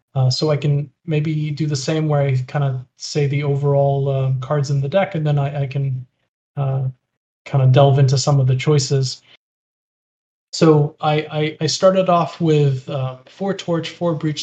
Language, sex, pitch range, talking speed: English, male, 140-155 Hz, 190 wpm